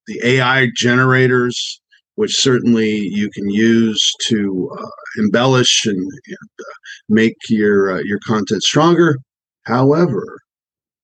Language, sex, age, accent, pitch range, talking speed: English, male, 50-69, American, 115-150 Hz, 115 wpm